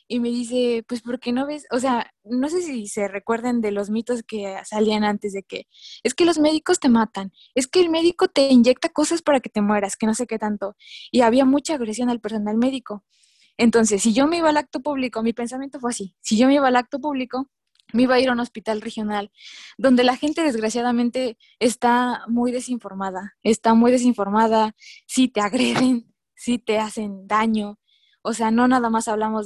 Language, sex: Spanish, female